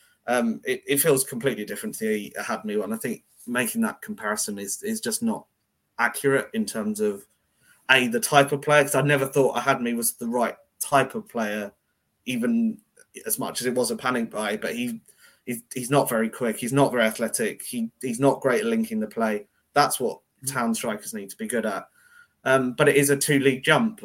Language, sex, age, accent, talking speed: English, male, 20-39, British, 205 wpm